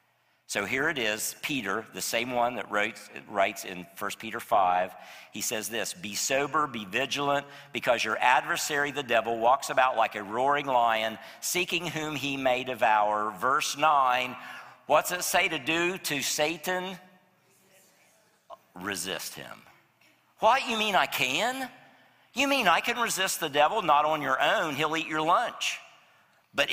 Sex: male